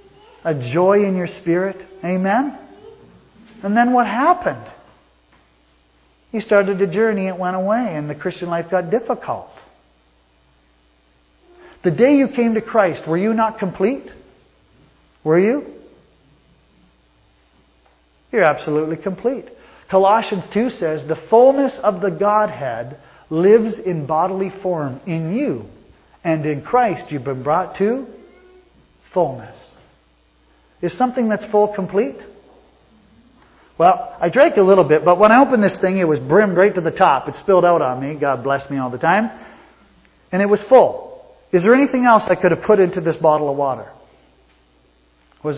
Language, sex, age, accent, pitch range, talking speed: English, male, 40-59, American, 155-225 Hz, 150 wpm